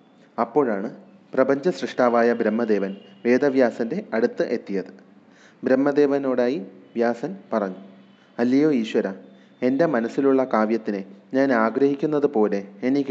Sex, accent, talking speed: male, native, 85 wpm